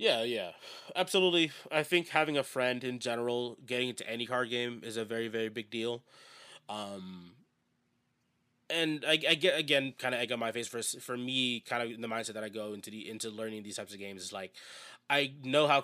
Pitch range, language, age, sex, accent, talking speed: 115-140 Hz, English, 20-39, male, American, 210 wpm